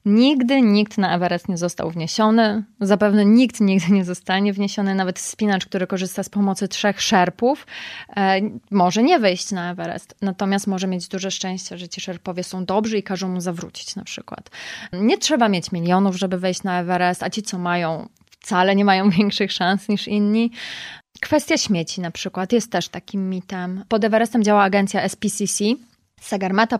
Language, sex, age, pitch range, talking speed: Polish, female, 20-39, 185-225 Hz, 170 wpm